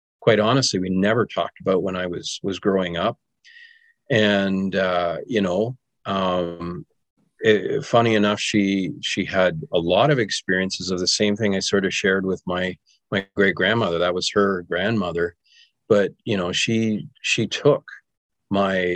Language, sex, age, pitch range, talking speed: English, male, 40-59, 85-105 Hz, 160 wpm